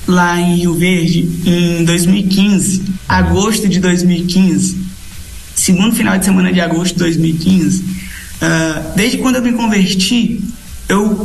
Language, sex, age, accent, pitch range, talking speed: Portuguese, male, 20-39, Brazilian, 195-245 Hz, 130 wpm